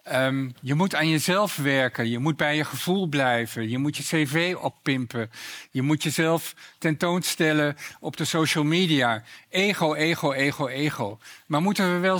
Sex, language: male, Dutch